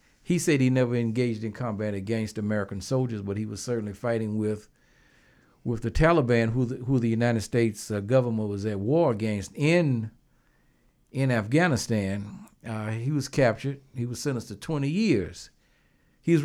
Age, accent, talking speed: 60-79, American, 165 wpm